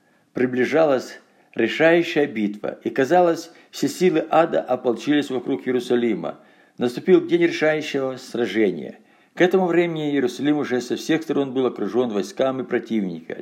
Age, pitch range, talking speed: 60-79, 120-160 Hz, 120 wpm